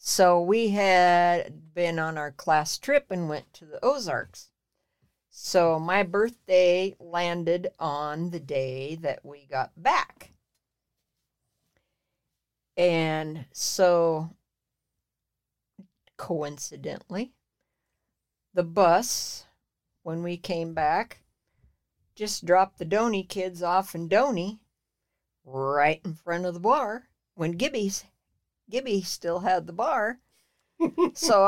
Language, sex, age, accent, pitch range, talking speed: English, female, 60-79, American, 160-215 Hz, 105 wpm